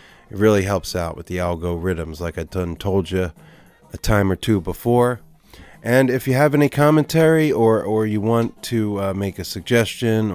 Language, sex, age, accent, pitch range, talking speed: English, male, 30-49, American, 95-120 Hz, 185 wpm